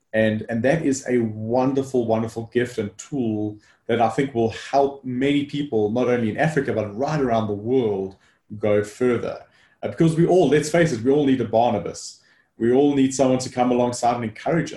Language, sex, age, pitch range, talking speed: English, male, 30-49, 115-145 Hz, 195 wpm